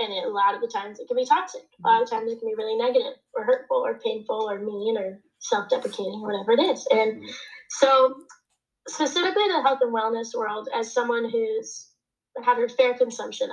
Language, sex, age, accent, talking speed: English, female, 10-29, American, 205 wpm